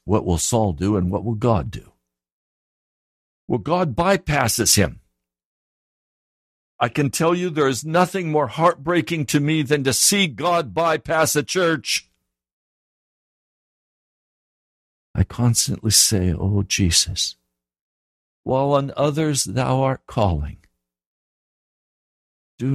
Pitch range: 85-135 Hz